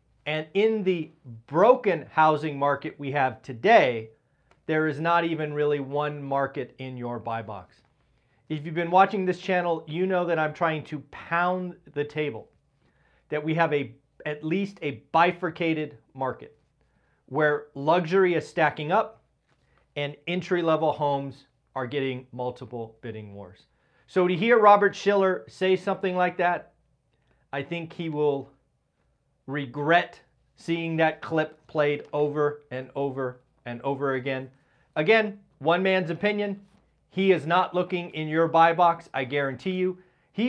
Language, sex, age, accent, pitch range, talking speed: English, male, 40-59, American, 135-175 Hz, 145 wpm